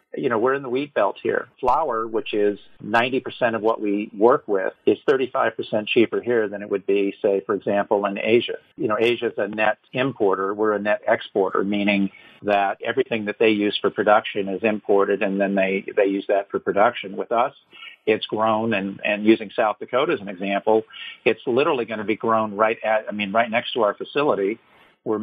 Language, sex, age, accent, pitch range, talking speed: English, male, 50-69, American, 105-120 Hz, 205 wpm